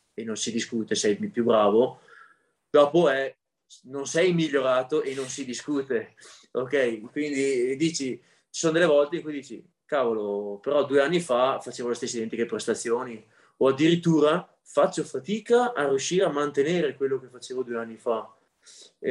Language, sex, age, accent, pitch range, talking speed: Italian, male, 20-39, native, 115-145 Hz, 155 wpm